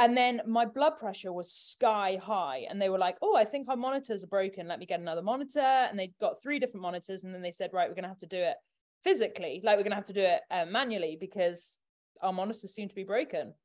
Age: 20-39